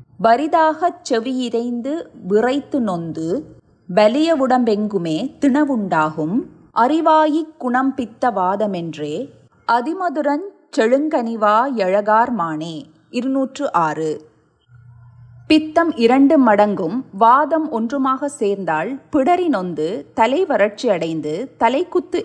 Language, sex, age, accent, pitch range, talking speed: Tamil, female, 30-49, native, 190-295 Hz, 60 wpm